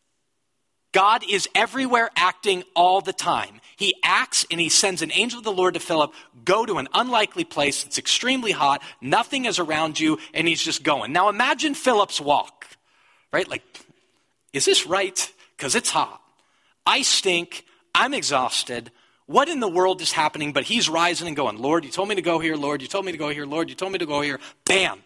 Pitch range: 145-200 Hz